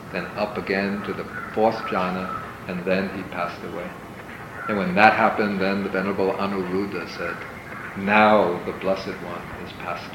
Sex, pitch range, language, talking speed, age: male, 95-115 Hz, English, 160 wpm, 50-69